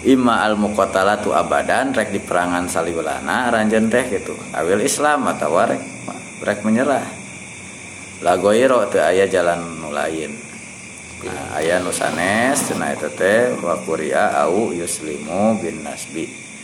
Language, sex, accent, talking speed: Indonesian, male, native, 100 wpm